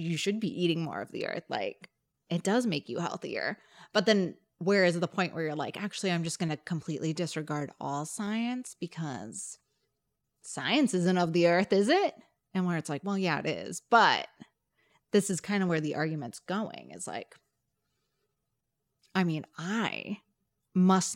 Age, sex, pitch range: 20-39, female, 160-200 Hz